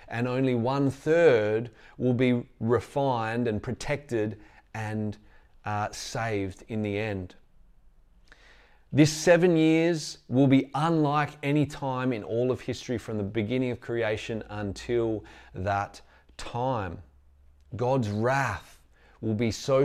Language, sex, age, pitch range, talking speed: English, male, 30-49, 100-135 Hz, 120 wpm